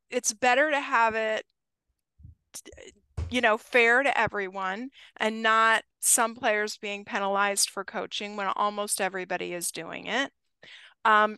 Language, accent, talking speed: English, American, 130 wpm